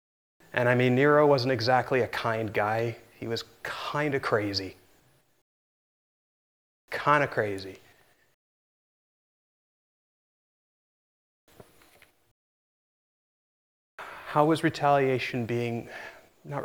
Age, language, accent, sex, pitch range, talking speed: 30-49, English, American, male, 115-145 Hz, 80 wpm